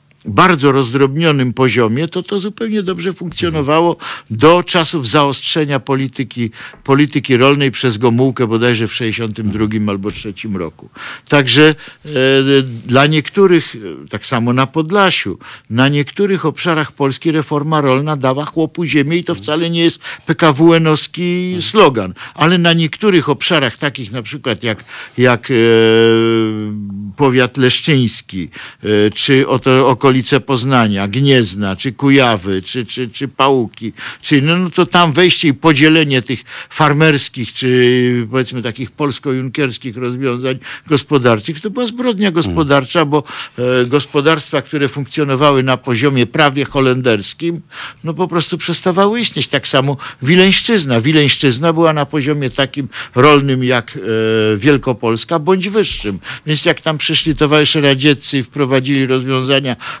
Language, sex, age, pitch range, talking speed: Polish, male, 50-69, 125-160 Hz, 130 wpm